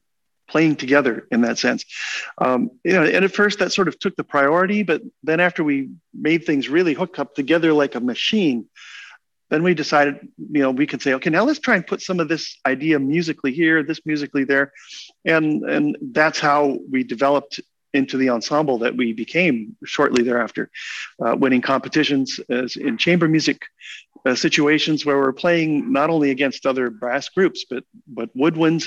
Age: 50-69